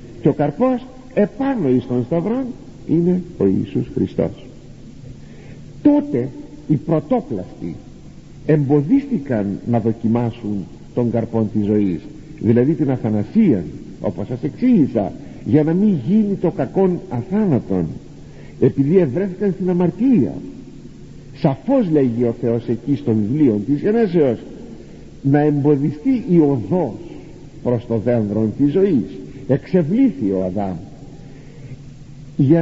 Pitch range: 130-205 Hz